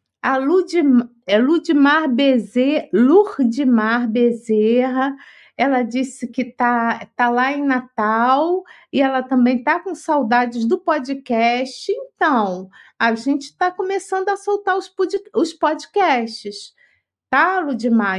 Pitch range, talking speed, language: 220-320 Hz, 100 wpm, Portuguese